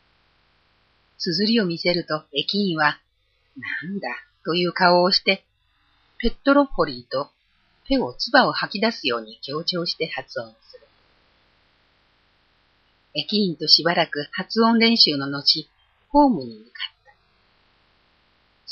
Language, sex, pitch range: Japanese, female, 135-200 Hz